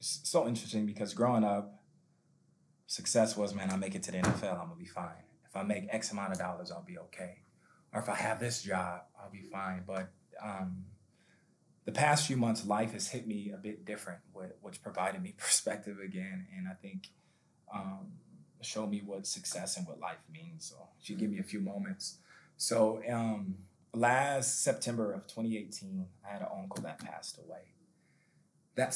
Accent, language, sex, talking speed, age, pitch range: American, English, male, 185 wpm, 20-39, 100-135 Hz